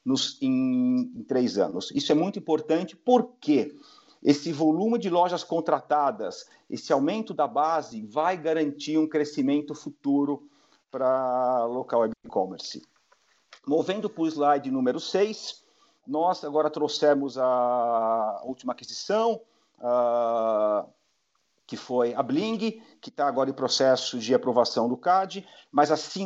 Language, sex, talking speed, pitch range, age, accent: Portuguese, male, 125 wpm, 130-185 Hz, 50-69, Brazilian